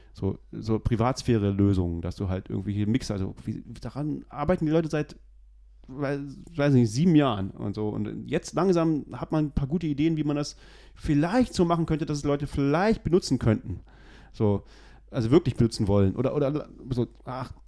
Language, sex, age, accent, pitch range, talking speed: German, male, 30-49, German, 110-155 Hz, 185 wpm